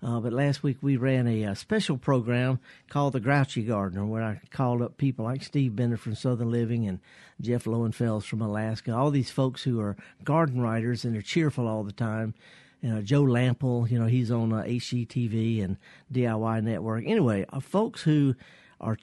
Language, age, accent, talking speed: English, 50-69, American, 195 wpm